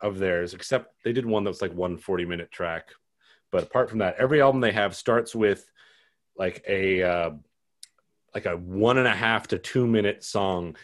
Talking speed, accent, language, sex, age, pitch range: 170 wpm, American, English, male, 30-49, 90-115 Hz